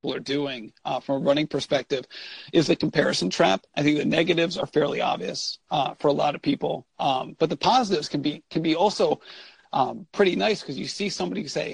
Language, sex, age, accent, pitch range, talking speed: English, male, 40-59, American, 150-180 Hz, 210 wpm